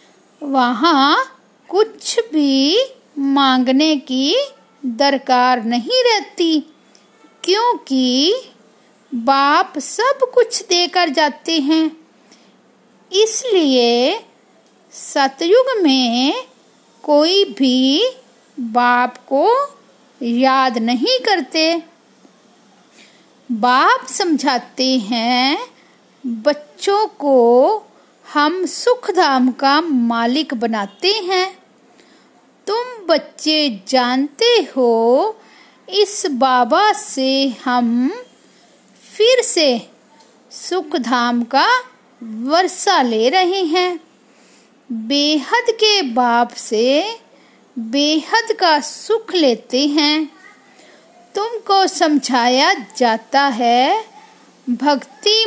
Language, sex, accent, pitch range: Hindi, female, native, 255-390 Hz